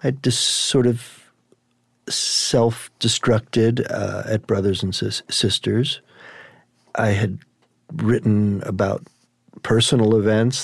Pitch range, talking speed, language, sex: 100-125 Hz, 90 wpm, English, male